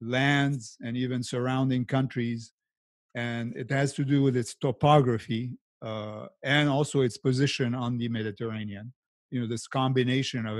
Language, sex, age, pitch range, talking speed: English, male, 50-69, 115-135 Hz, 145 wpm